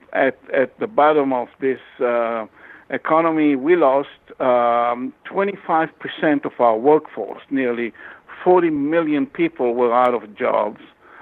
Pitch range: 125-160 Hz